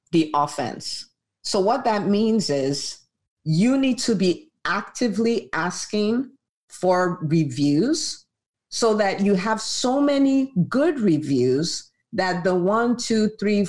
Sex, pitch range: female, 175-260 Hz